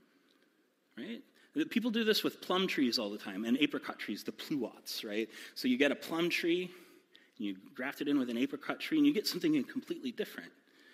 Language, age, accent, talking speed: English, 30-49, American, 205 wpm